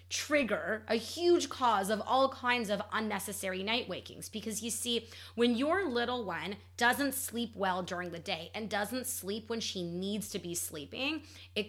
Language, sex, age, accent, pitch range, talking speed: English, female, 30-49, American, 195-260 Hz, 175 wpm